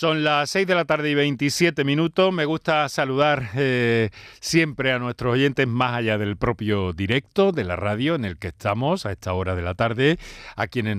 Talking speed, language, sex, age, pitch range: 200 wpm, Spanish, male, 40-59, 100-140 Hz